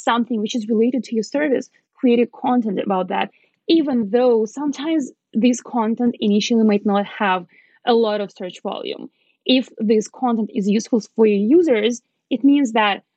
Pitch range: 205-250 Hz